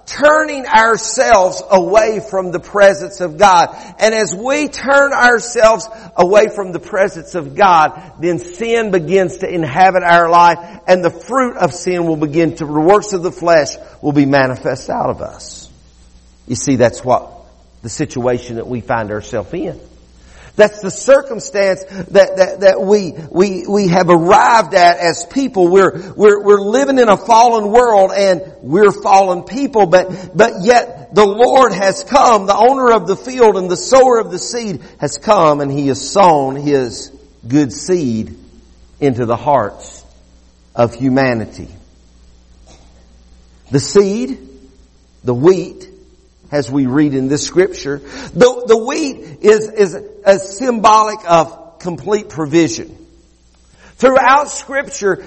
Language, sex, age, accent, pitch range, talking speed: English, male, 50-69, American, 150-220 Hz, 150 wpm